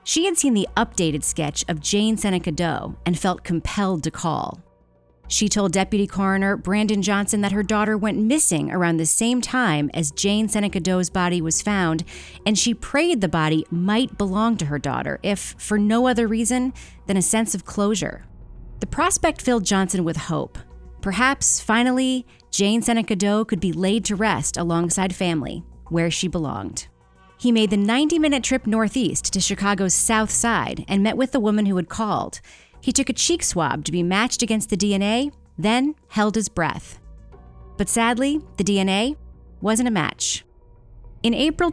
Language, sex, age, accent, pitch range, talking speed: English, female, 30-49, American, 175-230 Hz, 175 wpm